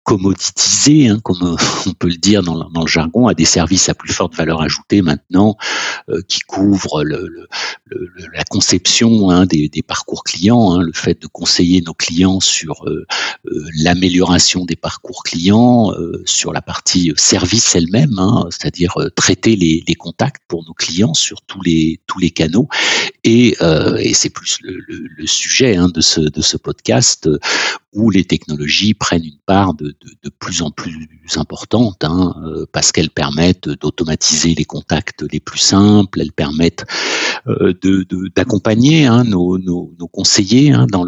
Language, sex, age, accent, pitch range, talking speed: French, male, 60-79, French, 80-100 Hz, 170 wpm